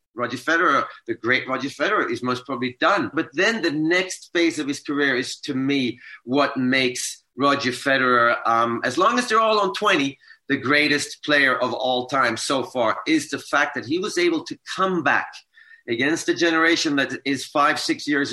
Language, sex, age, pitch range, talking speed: English, male, 40-59, 130-195 Hz, 195 wpm